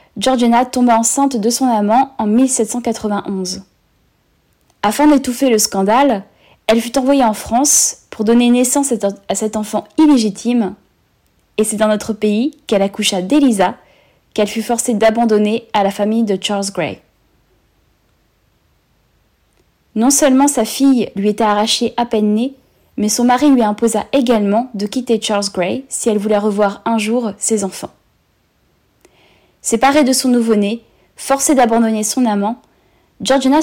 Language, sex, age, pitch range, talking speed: French, female, 20-39, 210-255 Hz, 140 wpm